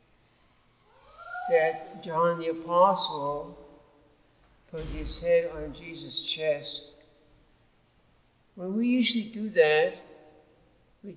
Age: 60-79